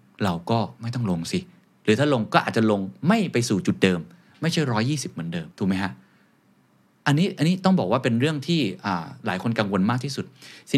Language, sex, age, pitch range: Thai, male, 20-39, 100-140 Hz